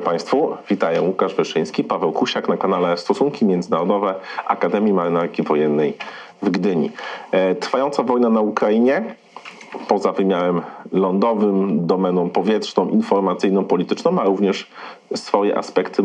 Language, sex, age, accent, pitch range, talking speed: Polish, male, 40-59, native, 95-110 Hz, 110 wpm